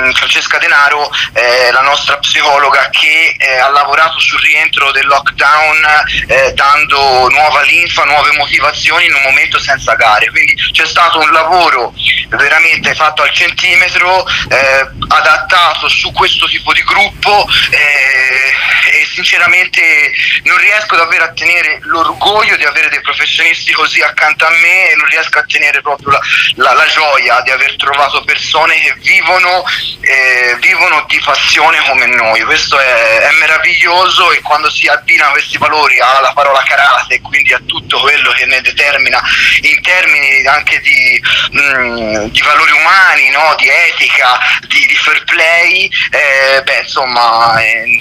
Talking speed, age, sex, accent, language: 150 wpm, 30-49, male, native, Italian